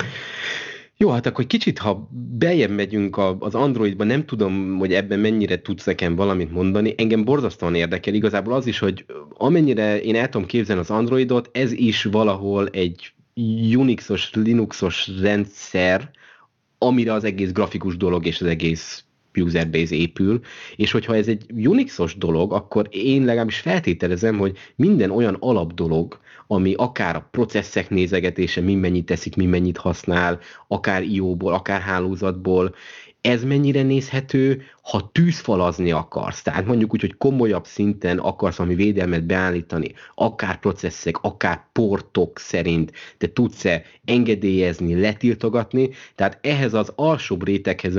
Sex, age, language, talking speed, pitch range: male, 30-49, Hungarian, 135 wpm, 90-115 Hz